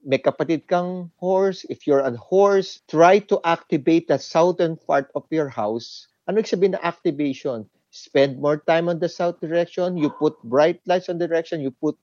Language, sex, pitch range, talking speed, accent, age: English, male, 135-180 Hz, 190 wpm, Filipino, 50-69